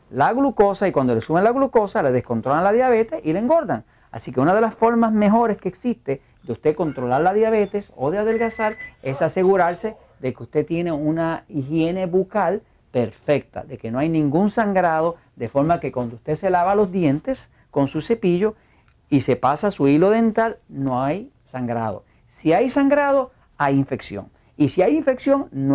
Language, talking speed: Spanish, 185 wpm